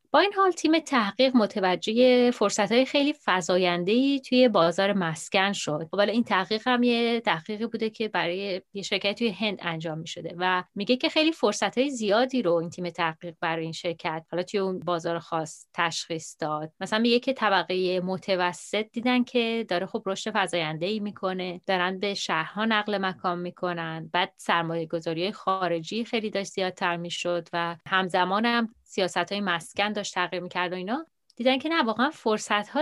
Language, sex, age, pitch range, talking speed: Persian, female, 30-49, 175-220 Hz, 165 wpm